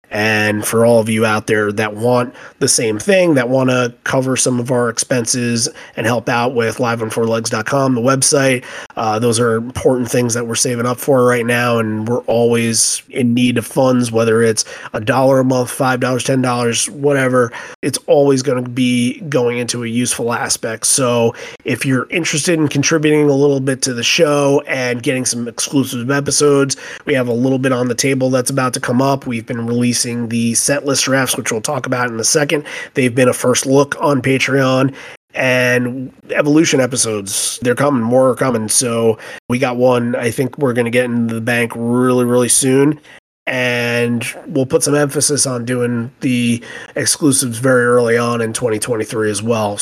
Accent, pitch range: American, 120-135 Hz